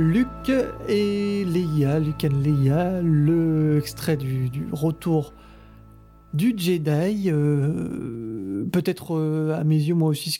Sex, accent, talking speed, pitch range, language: male, French, 125 wpm, 140-175 Hz, French